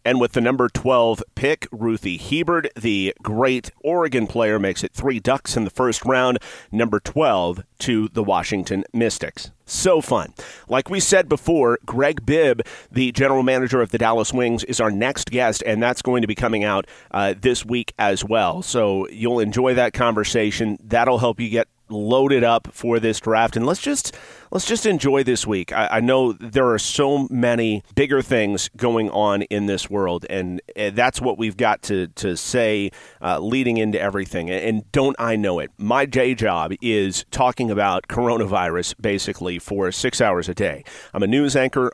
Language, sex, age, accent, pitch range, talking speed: English, male, 30-49, American, 105-125 Hz, 185 wpm